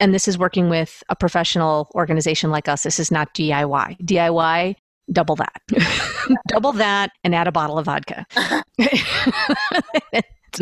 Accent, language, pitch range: American, English, 165-205 Hz